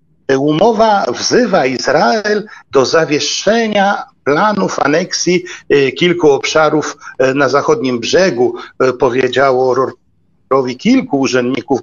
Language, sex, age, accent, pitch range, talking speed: Polish, male, 50-69, native, 140-205 Hz, 80 wpm